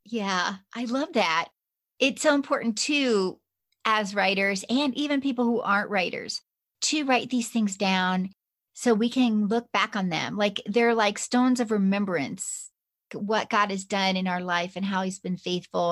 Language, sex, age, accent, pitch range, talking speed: English, female, 40-59, American, 185-230 Hz, 175 wpm